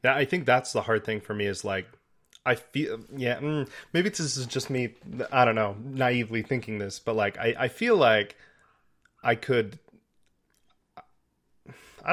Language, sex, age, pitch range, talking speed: English, male, 30-49, 105-125 Hz, 170 wpm